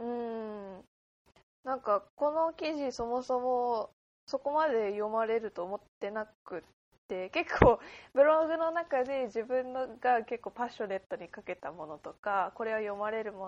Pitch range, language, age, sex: 195-265 Hz, Japanese, 20-39, female